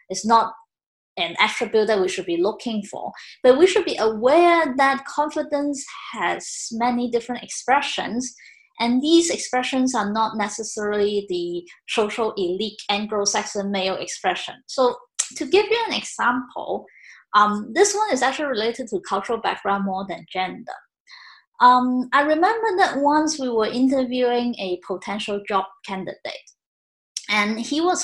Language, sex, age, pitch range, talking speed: English, female, 20-39, 215-325 Hz, 140 wpm